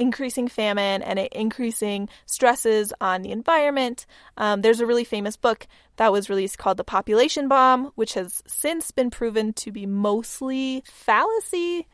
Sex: female